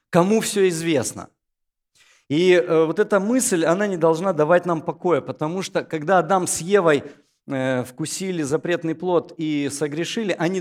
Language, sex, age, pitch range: Russian, male, 50-69, 145-200 Hz